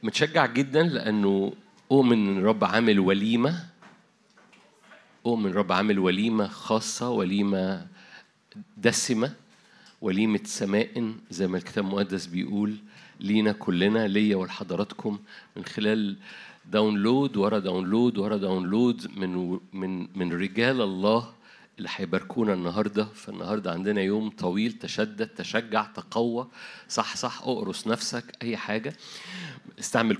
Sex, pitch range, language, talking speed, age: male, 100-120 Hz, Arabic, 110 wpm, 50-69